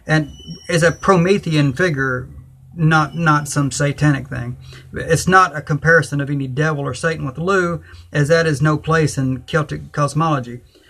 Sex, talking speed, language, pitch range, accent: male, 160 wpm, English, 130-165 Hz, American